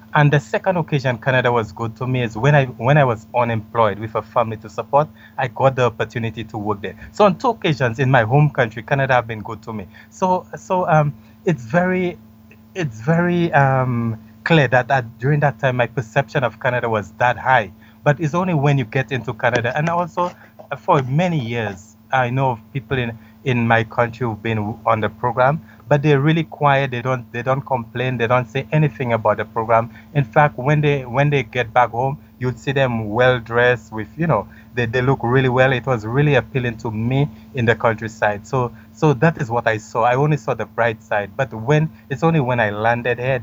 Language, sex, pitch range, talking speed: English, male, 110-140 Hz, 215 wpm